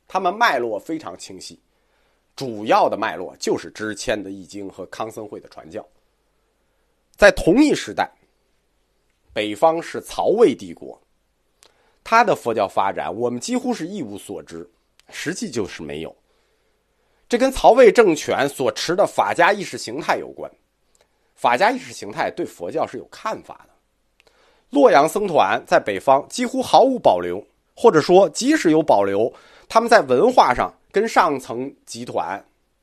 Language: Chinese